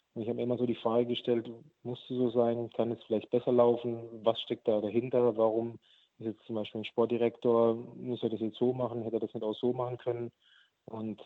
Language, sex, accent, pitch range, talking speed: German, male, German, 110-120 Hz, 225 wpm